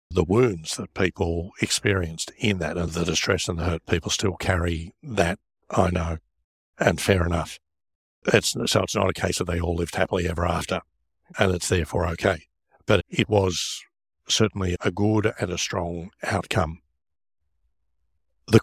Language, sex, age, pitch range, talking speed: English, male, 60-79, 85-100 Hz, 160 wpm